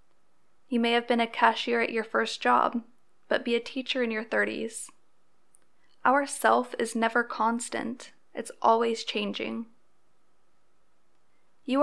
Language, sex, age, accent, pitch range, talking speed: English, female, 10-29, American, 225-265 Hz, 130 wpm